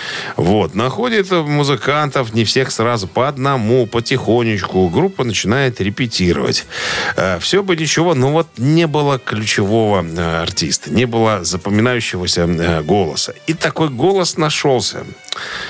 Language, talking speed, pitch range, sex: Russian, 110 wpm, 90-135 Hz, male